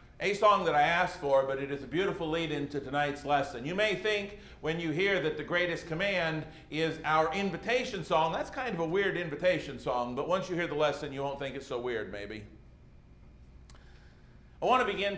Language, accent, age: English, American, 50-69